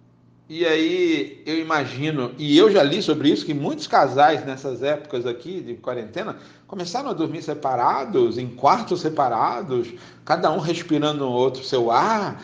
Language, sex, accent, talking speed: Portuguese, male, Brazilian, 160 wpm